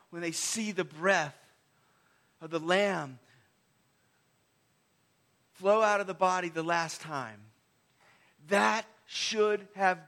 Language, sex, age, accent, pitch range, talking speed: English, male, 40-59, American, 145-195 Hz, 115 wpm